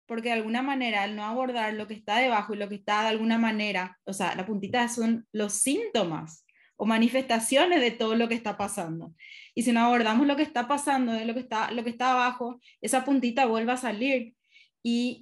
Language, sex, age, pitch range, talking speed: Spanish, female, 20-39, 215-260 Hz, 215 wpm